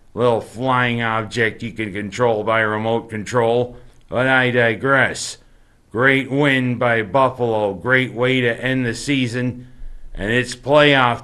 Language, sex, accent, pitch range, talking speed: English, male, American, 115-135 Hz, 135 wpm